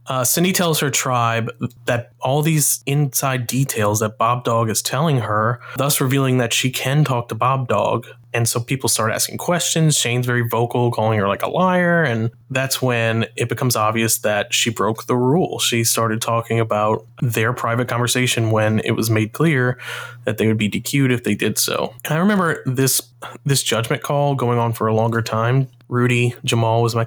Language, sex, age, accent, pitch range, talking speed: English, male, 20-39, American, 115-130 Hz, 195 wpm